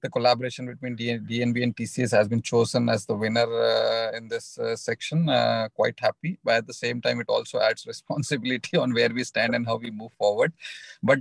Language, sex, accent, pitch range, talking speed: English, male, Indian, 115-135 Hz, 210 wpm